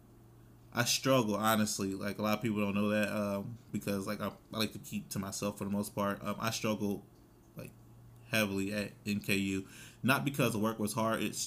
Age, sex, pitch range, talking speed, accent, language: 20-39, male, 105-115 Hz, 205 wpm, American, English